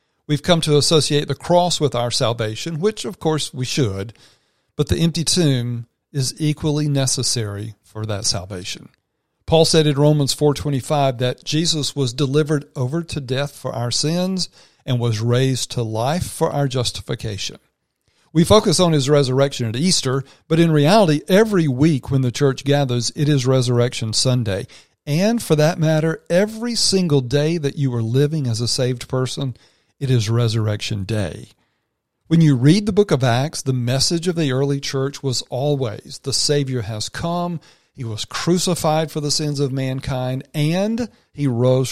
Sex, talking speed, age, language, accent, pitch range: male, 165 wpm, 40-59, English, American, 120-155 Hz